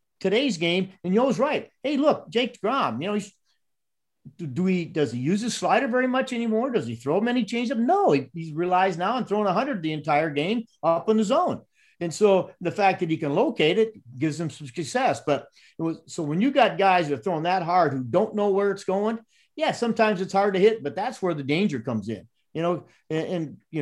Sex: male